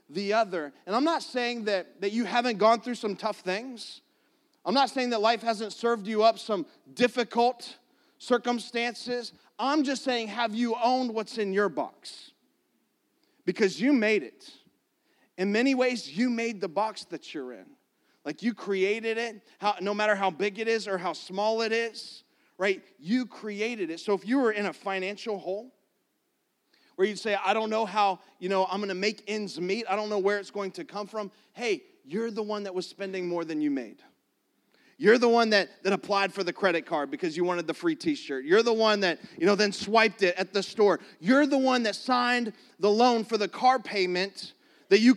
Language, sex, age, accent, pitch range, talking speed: English, male, 30-49, American, 200-240 Hz, 205 wpm